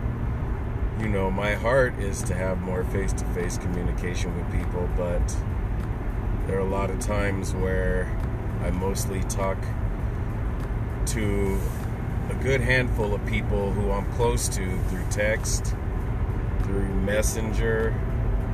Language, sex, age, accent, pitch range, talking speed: English, male, 40-59, American, 95-115 Hz, 120 wpm